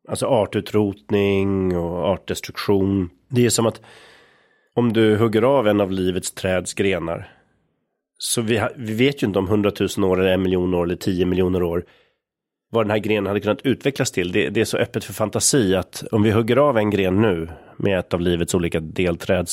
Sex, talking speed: male, 195 wpm